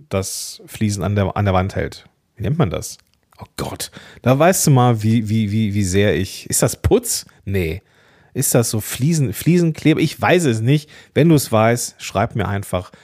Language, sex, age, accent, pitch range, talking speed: German, male, 40-59, German, 110-160 Hz, 205 wpm